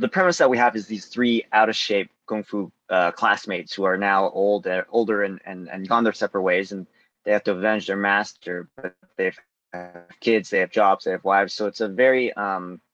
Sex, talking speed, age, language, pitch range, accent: male, 225 wpm, 20-39, English, 95-110 Hz, American